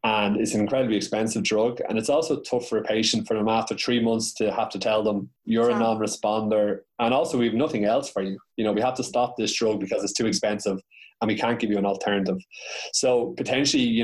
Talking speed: 240 wpm